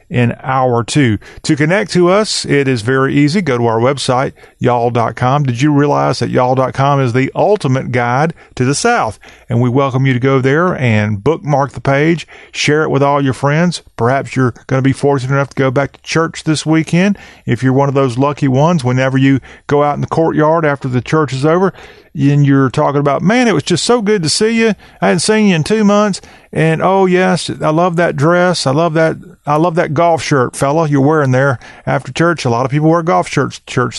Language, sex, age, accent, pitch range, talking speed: English, male, 40-59, American, 130-165 Hz, 230 wpm